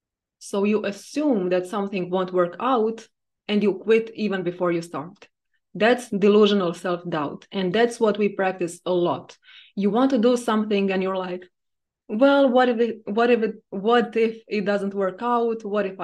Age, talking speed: 20-39, 160 wpm